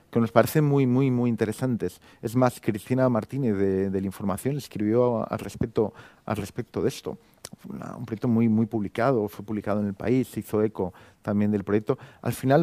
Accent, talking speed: Spanish, 185 wpm